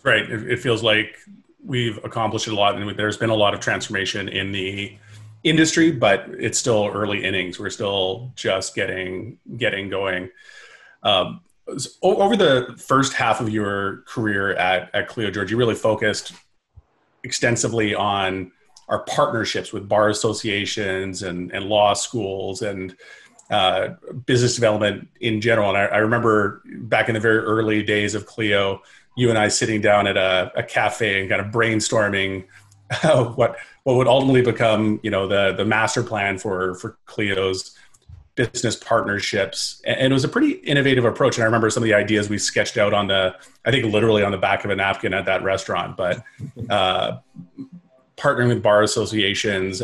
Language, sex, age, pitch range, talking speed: English, male, 30-49, 100-120 Hz, 170 wpm